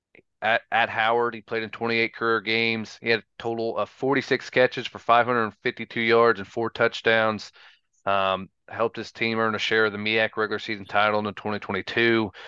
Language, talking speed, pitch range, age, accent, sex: English, 180 wpm, 105-120 Hz, 30-49, American, male